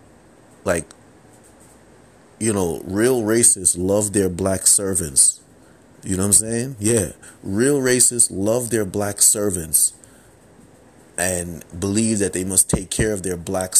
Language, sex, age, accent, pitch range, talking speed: English, male, 30-49, American, 90-105 Hz, 135 wpm